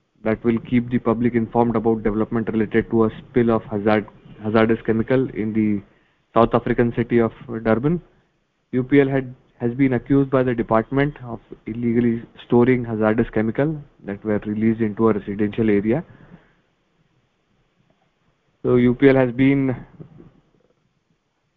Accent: Indian